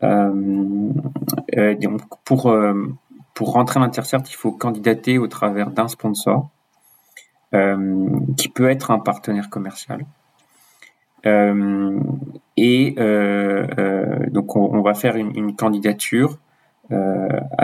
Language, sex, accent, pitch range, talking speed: French, male, French, 100-120 Hz, 125 wpm